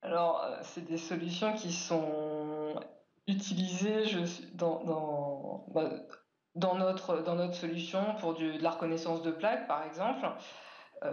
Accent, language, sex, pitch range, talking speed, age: French, French, female, 165-200 Hz, 130 wpm, 20-39